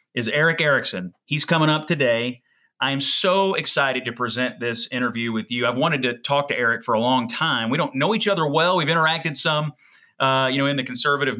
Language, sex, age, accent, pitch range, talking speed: English, male, 30-49, American, 120-150 Hz, 220 wpm